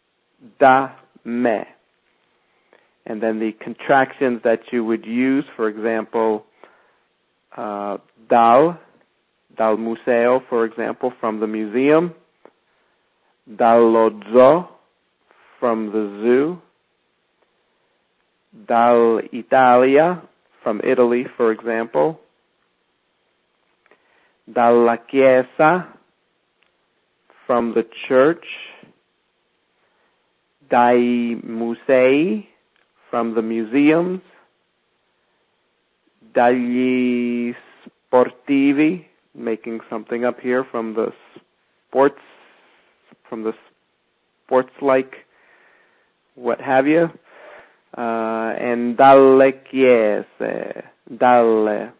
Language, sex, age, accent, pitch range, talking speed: English, male, 50-69, American, 115-130 Hz, 70 wpm